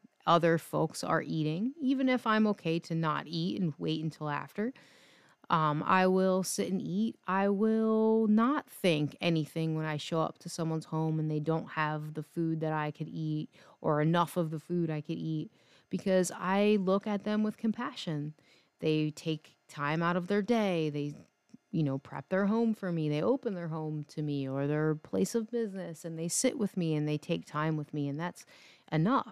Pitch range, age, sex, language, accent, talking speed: 155-195 Hz, 30-49, female, English, American, 200 wpm